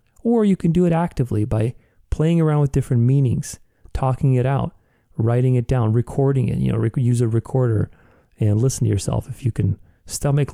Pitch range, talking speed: 110-135 Hz, 195 wpm